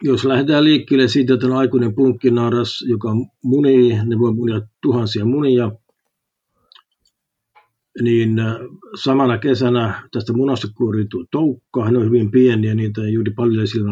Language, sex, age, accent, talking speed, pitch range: Finnish, male, 50-69, native, 130 wpm, 115-130 Hz